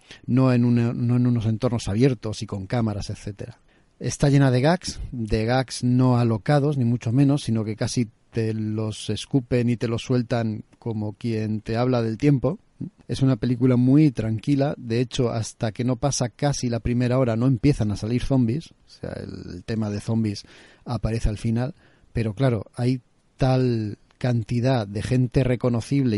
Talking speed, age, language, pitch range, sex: 175 wpm, 40-59, Spanish, 110-130 Hz, male